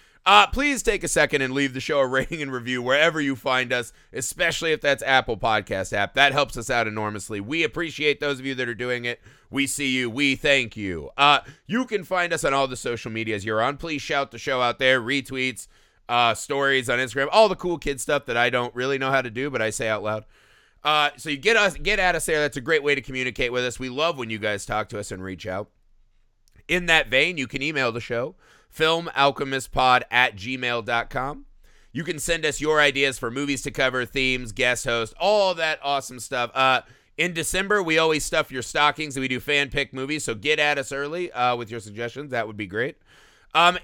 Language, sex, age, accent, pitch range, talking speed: English, male, 30-49, American, 115-150 Hz, 235 wpm